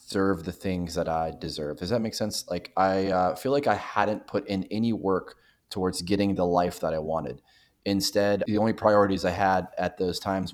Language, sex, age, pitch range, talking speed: English, male, 20-39, 85-100 Hz, 205 wpm